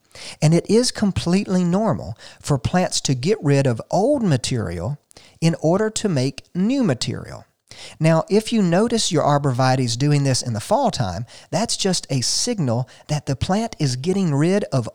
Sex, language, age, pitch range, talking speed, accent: male, English, 40-59, 125-175 Hz, 170 wpm, American